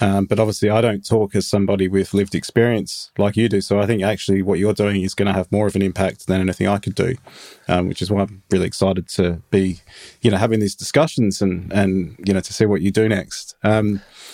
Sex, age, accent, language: male, 30-49, Australian, English